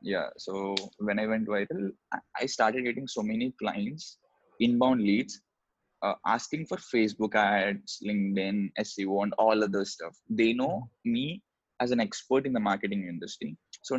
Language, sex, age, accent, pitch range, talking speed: Hindi, male, 20-39, native, 100-120 Hz, 155 wpm